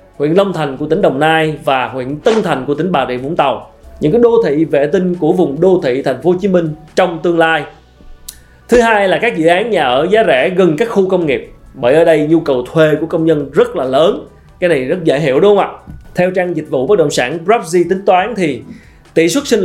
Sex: male